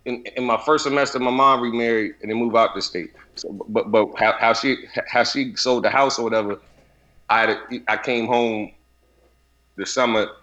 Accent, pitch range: American, 110-140 Hz